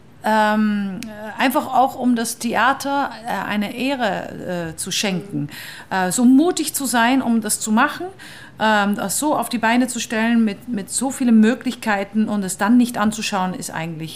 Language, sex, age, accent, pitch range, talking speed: German, female, 50-69, German, 200-270 Hz, 175 wpm